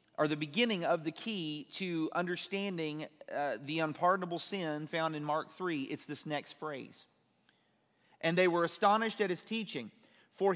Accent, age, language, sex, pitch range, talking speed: American, 30-49, English, male, 150-190 Hz, 160 wpm